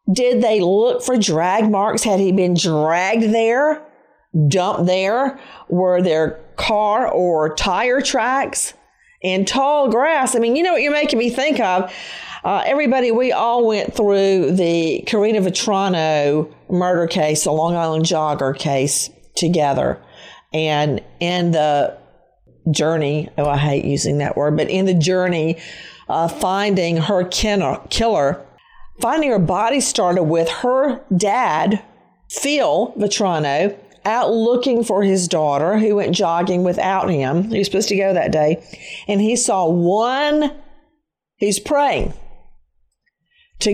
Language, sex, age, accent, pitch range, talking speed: English, female, 50-69, American, 170-230 Hz, 135 wpm